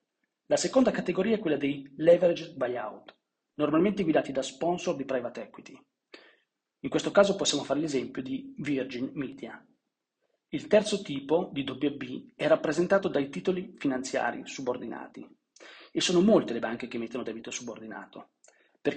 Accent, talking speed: native, 140 wpm